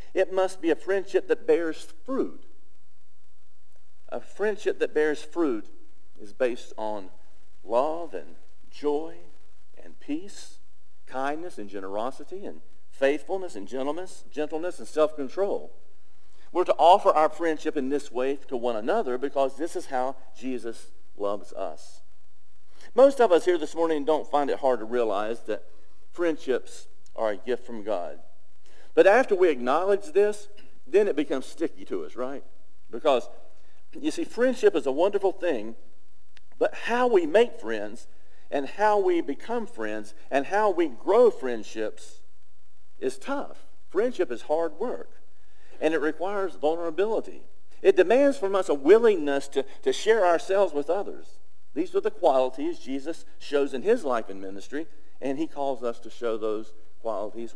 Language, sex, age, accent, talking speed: English, male, 50-69, American, 150 wpm